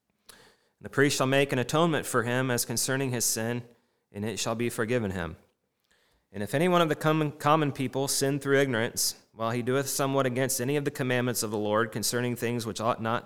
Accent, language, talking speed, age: American, English, 210 wpm, 30-49